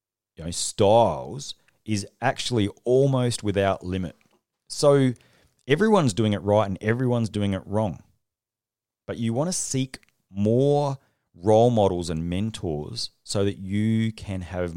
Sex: male